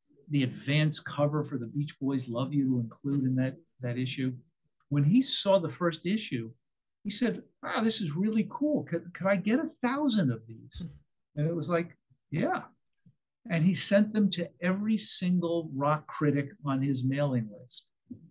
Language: English